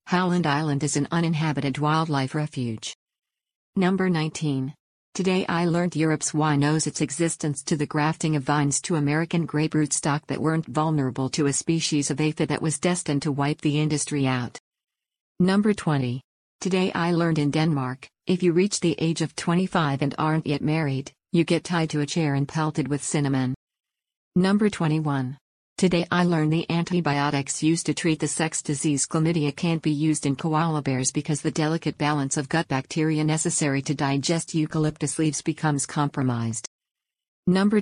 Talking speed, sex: 170 wpm, female